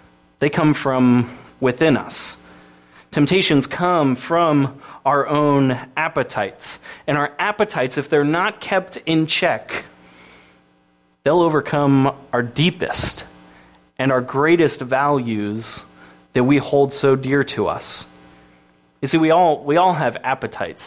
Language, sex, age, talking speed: English, male, 20-39, 125 wpm